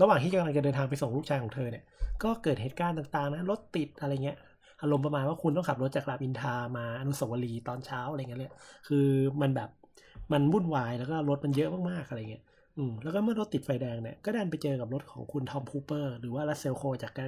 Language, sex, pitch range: Thai, male, 130-150 Hz